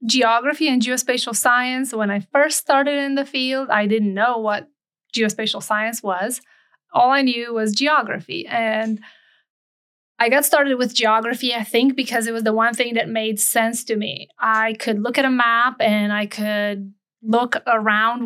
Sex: female